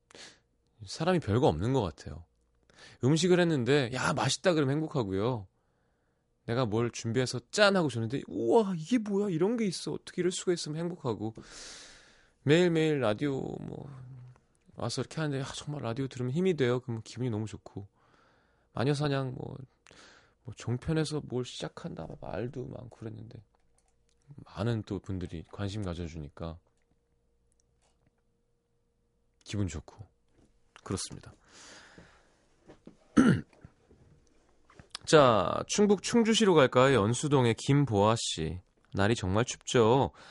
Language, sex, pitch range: Korean, male, 100-150 Hz